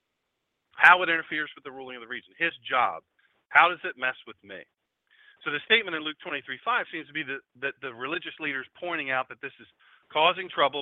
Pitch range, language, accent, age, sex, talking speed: 140-215 Hz, English, American, 40-59, male, 210 wpm